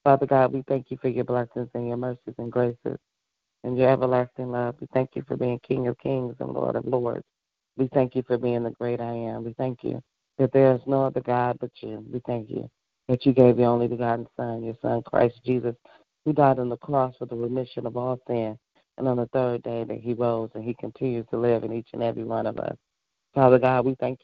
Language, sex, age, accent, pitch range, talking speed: English, female, 30-49, American, 115-130 Hz, 250 wpm